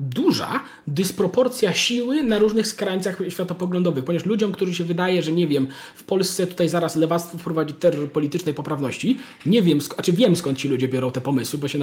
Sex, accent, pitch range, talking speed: male, native, 150-195 Hz, 195 wpm